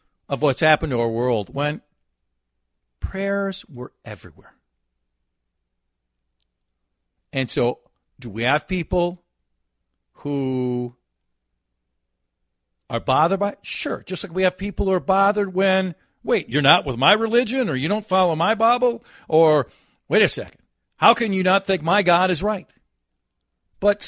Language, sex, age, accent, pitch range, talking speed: English, male, 50-69, American, 115-190 Hz, 140 wpm